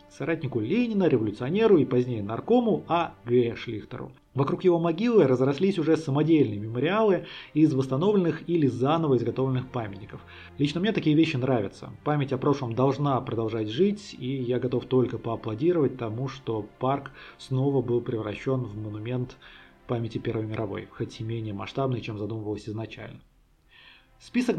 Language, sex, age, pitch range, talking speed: Russian, male, 30-49, 115-150 Hz, 140 wpm